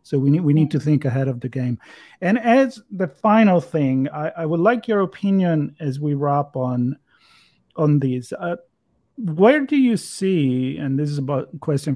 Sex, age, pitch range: male, 40-59, 135-170 Hz